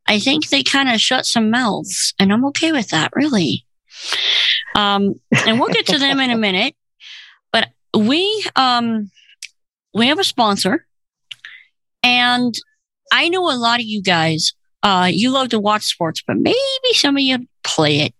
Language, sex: English, female